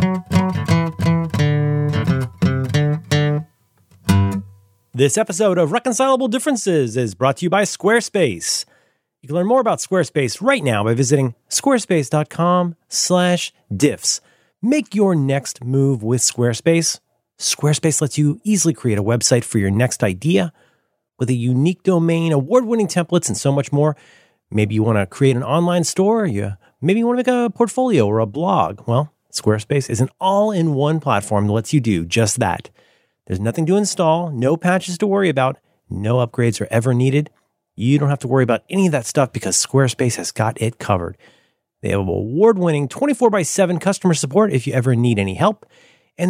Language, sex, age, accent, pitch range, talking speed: English, male, 30-49, American, 115-180 Hz, 165 wpm